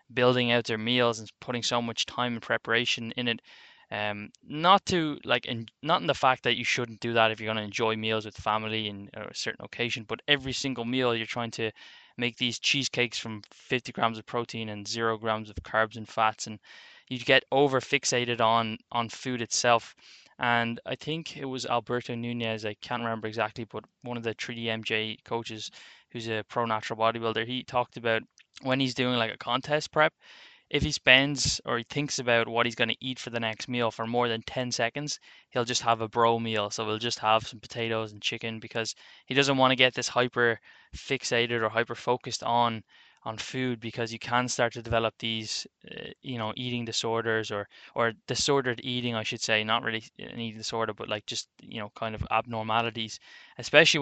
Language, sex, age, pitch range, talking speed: English, male, 10-29, 110-125 Hz, 205 wpm